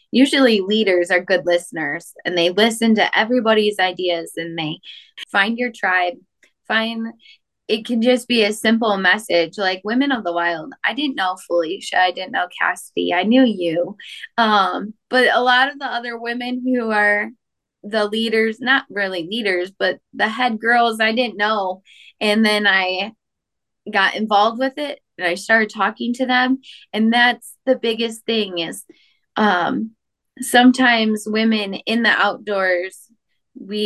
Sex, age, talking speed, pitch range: female, 10-29, 155 wpm, 185-240 Hz